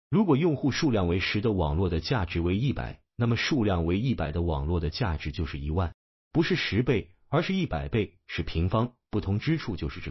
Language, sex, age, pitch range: Chinese, male, 30-49, 80-120 Hz